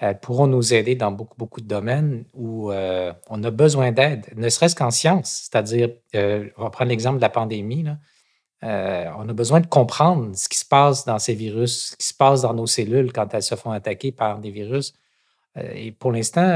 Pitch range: 110-135 Hz